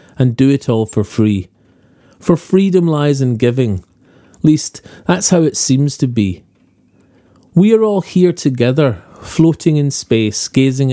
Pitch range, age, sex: 115-160 Hz, 40-59, male